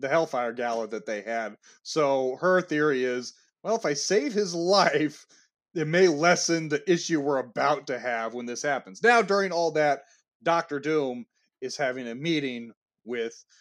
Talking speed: 170 wpm